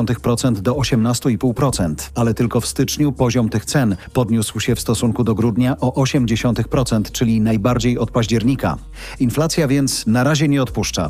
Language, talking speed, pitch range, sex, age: Polish, 145 wpm, 115-130 Hz, male, 40-59